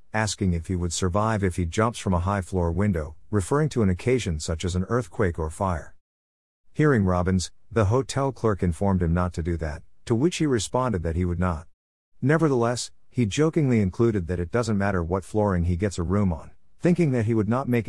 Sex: male